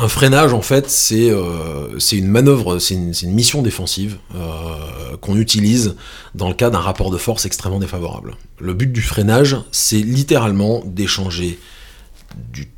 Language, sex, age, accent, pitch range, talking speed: French, male, 30-49, French, 90-125 Hz, 155 wpm